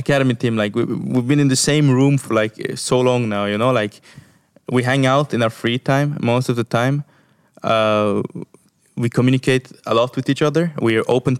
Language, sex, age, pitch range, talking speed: English, male, 20-39, 105-130 Hz, 210 wpm